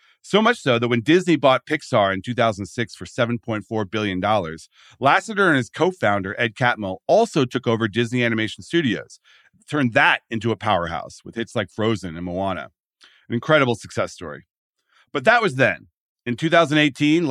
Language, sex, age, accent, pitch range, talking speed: English, male, 40-59, American, 100-135 Hz, 160 wpm